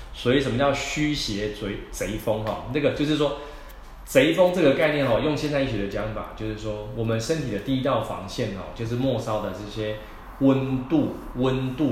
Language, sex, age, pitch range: Chinese, male, 20-39, 105-135 Hz